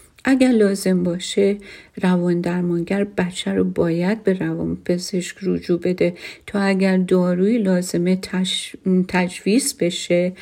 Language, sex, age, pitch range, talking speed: Persian, female, 50-69, 175-195 Hz, 115 wpm